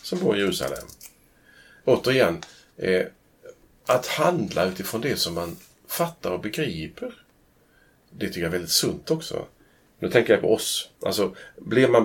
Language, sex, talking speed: Swedish, male, 145 wpm